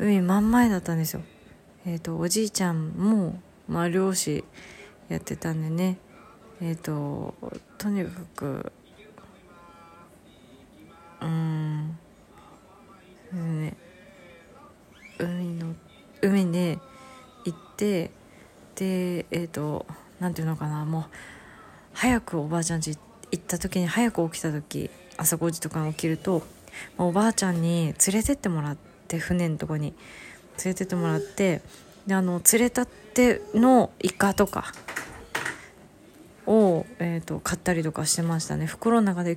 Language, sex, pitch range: Japanese, female, 160-200 Hz